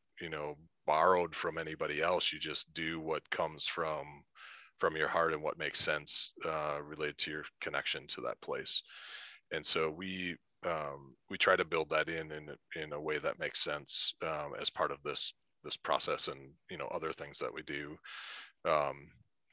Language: English